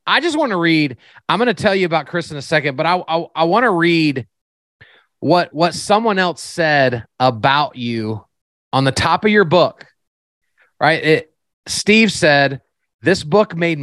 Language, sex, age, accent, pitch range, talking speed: English, male, 30-49, American, 140-180 Hz, 180 wpm